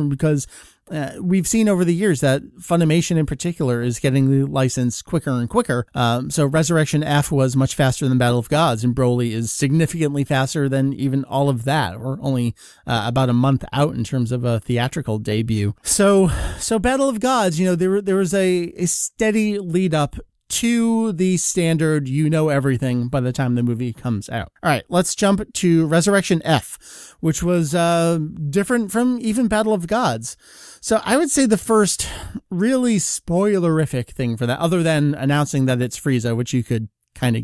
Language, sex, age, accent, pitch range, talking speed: English, male, 30-49, American, 125-185 Hz, 190 wpm